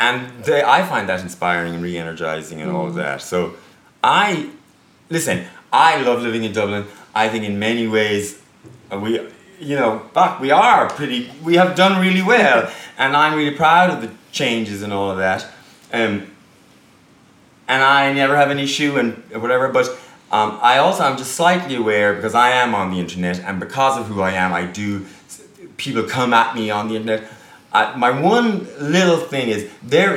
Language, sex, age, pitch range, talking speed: English, male, 30-49, 105-155 Hz, 185 wpm